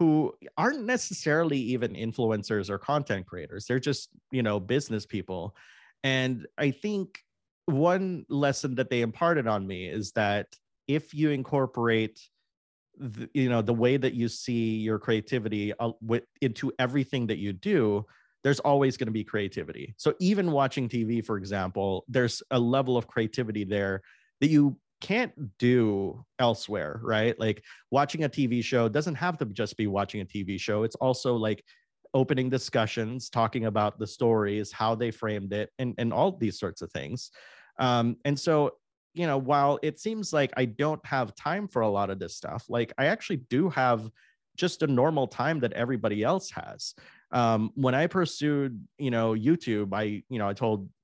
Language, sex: English, male